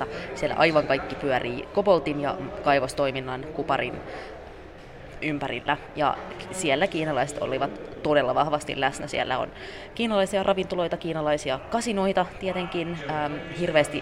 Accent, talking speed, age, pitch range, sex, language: native, 105 wpm, 20-39, 140-160 Hz, female, Finnish